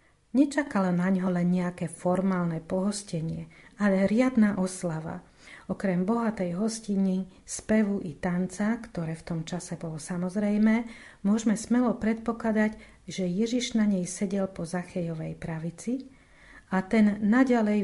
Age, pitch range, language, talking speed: 40-59, 180-215 Hz, Slovak, 120 wpm